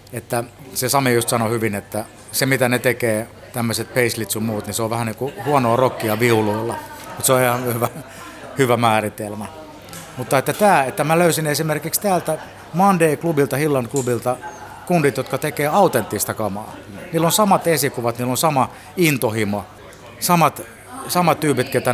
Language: Finnish